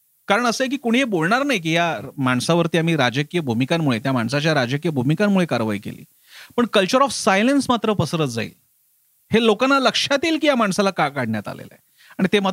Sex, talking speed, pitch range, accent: male, 90 wpm, 145-215 Hz, native